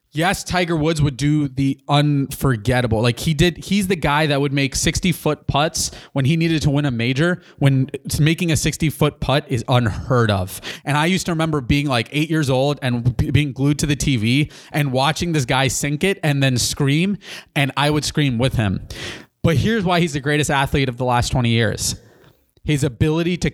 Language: English